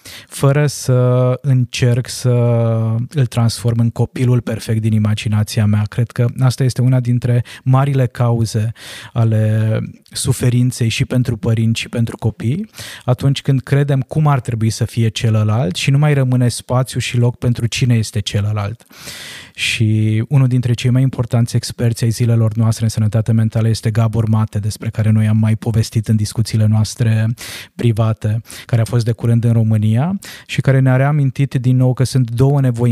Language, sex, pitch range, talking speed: Romanian, male, 110-130 Hz, 165 wpm